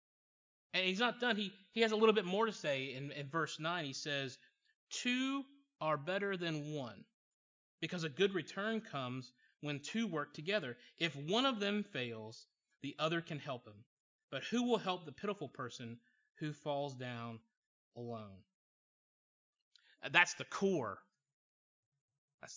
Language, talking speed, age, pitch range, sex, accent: English, 155 wpm, 30-49, 140-195 Hz, male, American